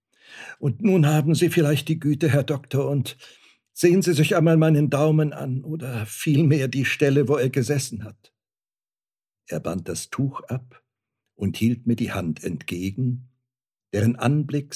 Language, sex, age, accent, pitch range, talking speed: German, male, 60-79, German, 110-140 Hz, 155 wpm